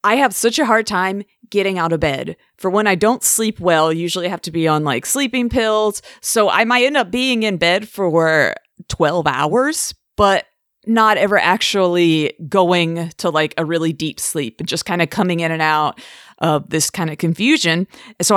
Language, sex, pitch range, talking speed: English, female, 170-215 Hz, 200 wpm